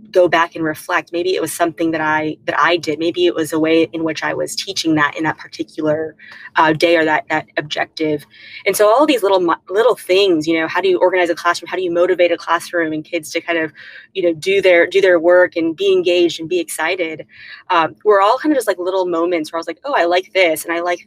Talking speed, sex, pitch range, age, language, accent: 260 wpm, female, 160-180 Hz, 20-39, English, American